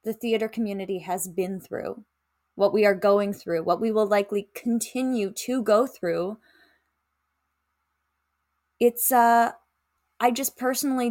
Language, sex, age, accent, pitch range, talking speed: English, female, 10-29, American, 185-225 Hz, 130 wpm